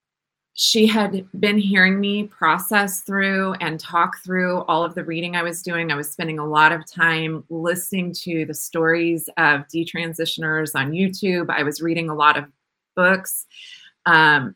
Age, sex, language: 20-39, female, English